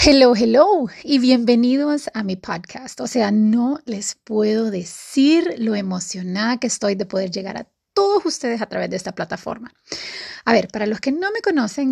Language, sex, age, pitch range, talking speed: Spanish, female, 30-49, 200-275 Hz, 180 wpm